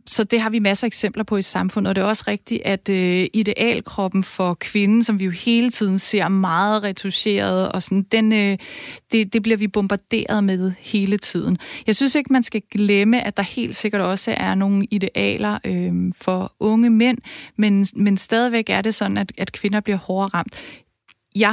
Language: Danish